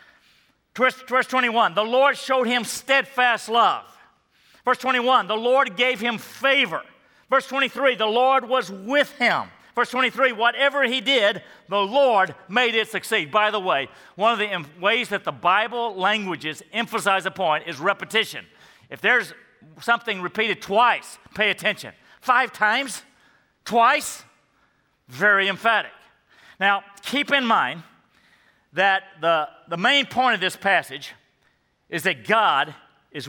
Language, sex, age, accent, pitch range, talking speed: English, male, 40-59, American, 185-250 Hz, 135 wpm